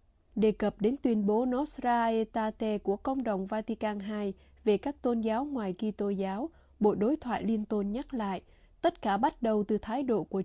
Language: Vietnamese